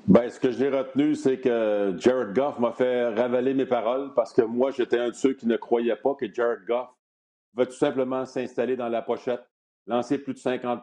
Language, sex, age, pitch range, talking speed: French, male, 50-69, 120-140 Hz, 215 wpm